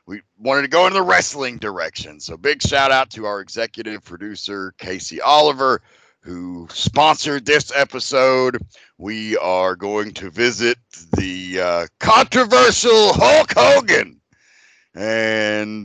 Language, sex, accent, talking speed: English, male, American, 120 wpm